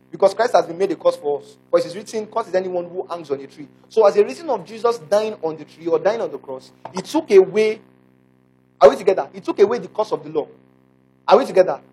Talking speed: 265 wpm